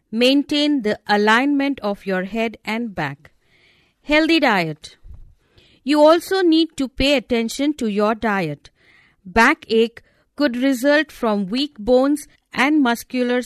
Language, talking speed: English, 120 wpm